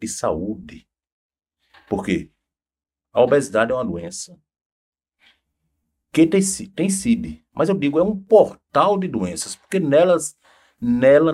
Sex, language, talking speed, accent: male, Portuguese, 120 wpm, Brazilian